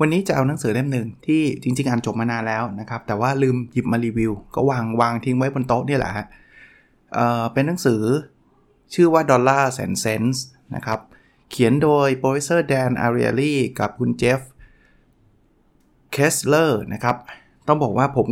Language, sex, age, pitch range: Thai, male, 20-39, 115-140 Hz